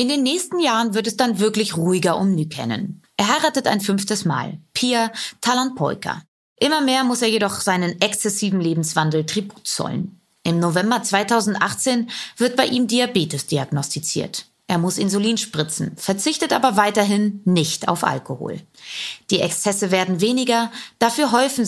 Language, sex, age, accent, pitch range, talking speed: German, female, 20-39, German, 175-235 Hz, 145 wpm